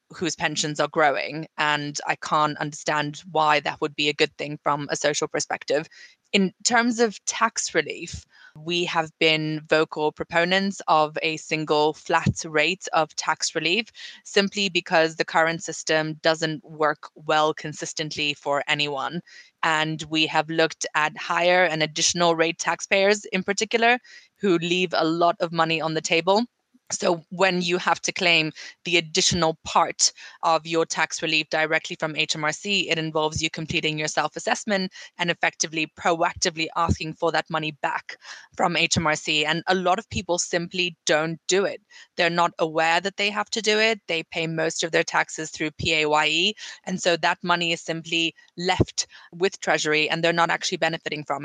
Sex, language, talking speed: female, English, 165 wpm